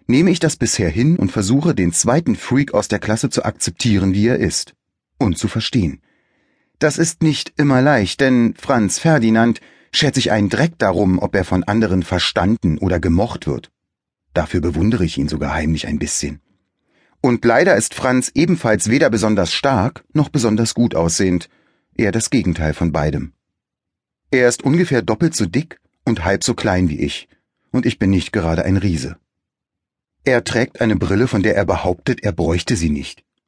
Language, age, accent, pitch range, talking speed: German, 30-49, German, 90-125 Hz, 175 wpm